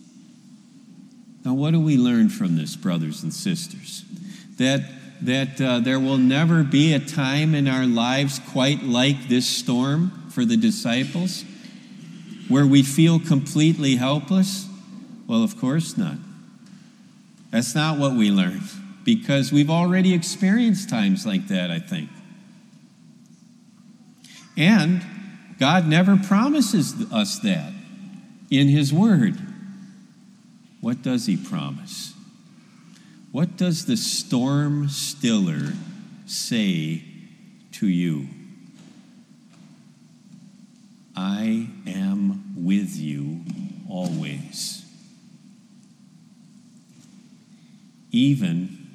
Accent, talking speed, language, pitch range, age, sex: American, 95 wpm, English, 175-215 Hz, 50-69, male